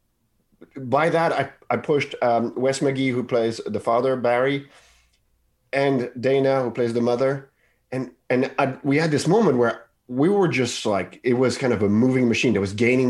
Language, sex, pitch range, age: English, male, 105-130 Hz, 30-49